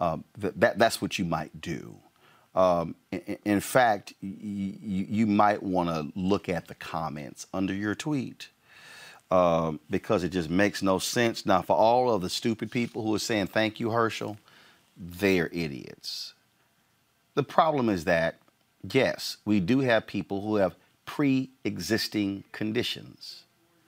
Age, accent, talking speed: 40-59, American, 140 wpm